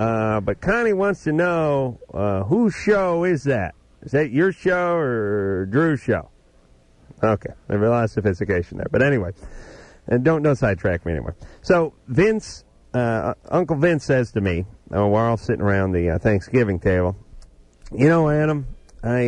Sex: male